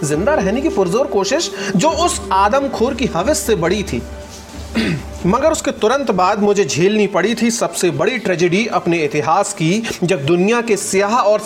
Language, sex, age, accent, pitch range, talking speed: Hindi, male, 40-59, native, 180-235 Hz, 160 wpm